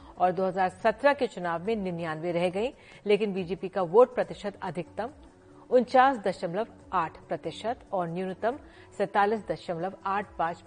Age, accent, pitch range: 50-69, native, 180-230 Hz